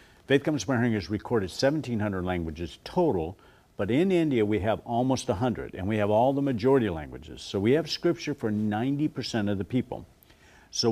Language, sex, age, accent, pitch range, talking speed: English, male, 60-79, American, 100-130 Hz, 175 wpm